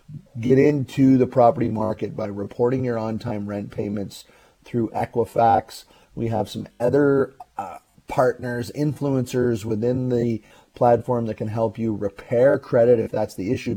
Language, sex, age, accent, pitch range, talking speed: English, male, 30-49, American, 115-135 Hz, 145 wpm